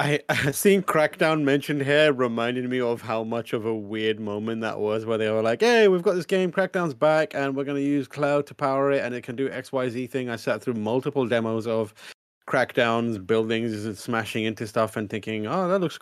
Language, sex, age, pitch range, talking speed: English, male, 30-49, 105-140 Hz, 220 wpm